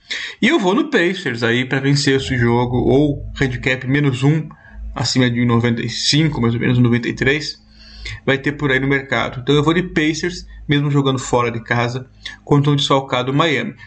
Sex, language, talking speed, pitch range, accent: male, Portuguese, 180 wpm, 125-170 Hz, Brazilian